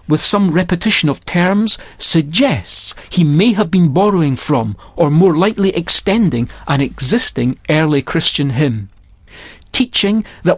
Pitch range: 130-190 Hz